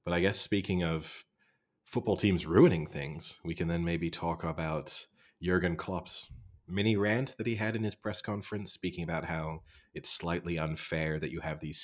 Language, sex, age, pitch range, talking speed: English, male, 30-49, 80-90 Hz, 185 wpm